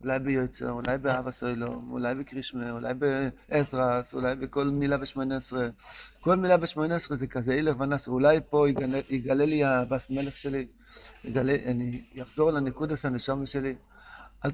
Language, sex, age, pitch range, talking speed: Hebrew, male, 60-79, 135-175 Hz, 155 wpm